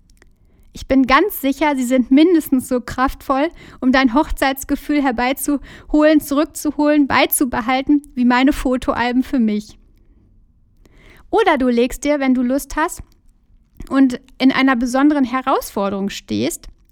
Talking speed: 120 wpm